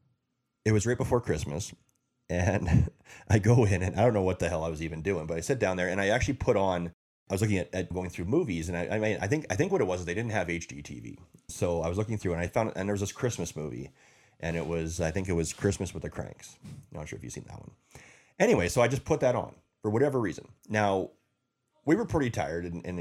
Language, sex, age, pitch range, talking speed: English, male, 30-49, 85-110 Hz, 270 wpm